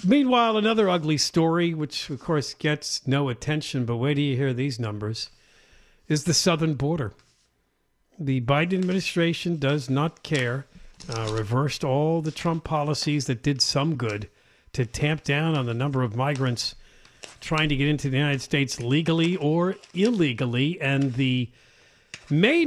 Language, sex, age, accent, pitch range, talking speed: English, male, 50-69, American, 135-185 Hz, 155 wpm